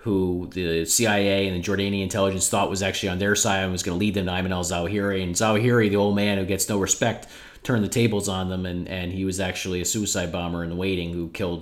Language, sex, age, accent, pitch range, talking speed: English, male, 30-49, American, 85-105 Hz, 255 wpm